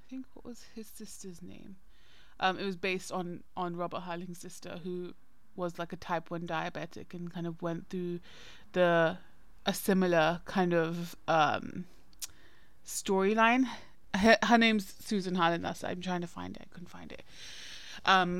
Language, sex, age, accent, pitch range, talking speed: English, female, 20-39, British, 175-200 Hz, 165 wpm